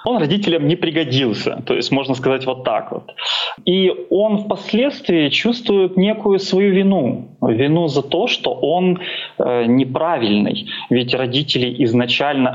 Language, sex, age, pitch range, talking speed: Russian, male, 20-39, 120-160 Hz, 130 wpm